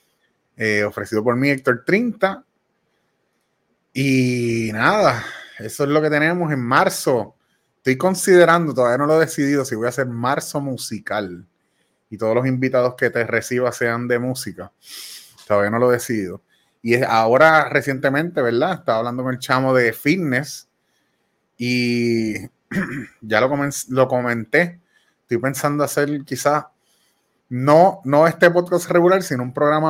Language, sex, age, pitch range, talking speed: Spanish, male, 30-49, 115-145 Hz, 145 wpm